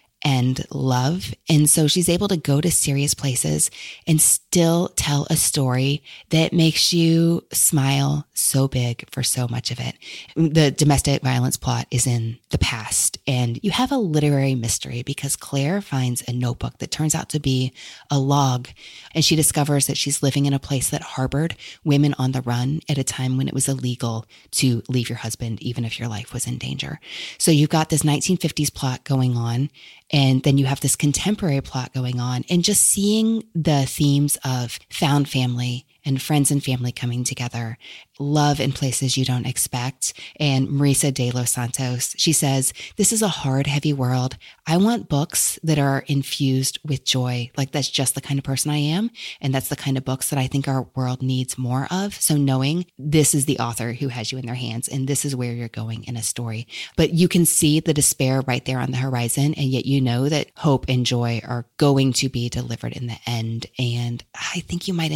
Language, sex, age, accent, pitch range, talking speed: English, female, 20-39, American, 125-150 Hz, 205 wpm